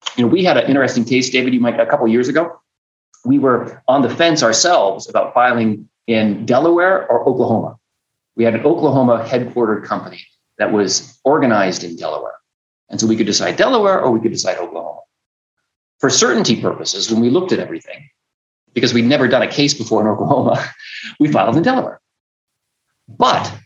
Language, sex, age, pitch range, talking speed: English, male, 30-49, 115-160 Hz, 180 wpm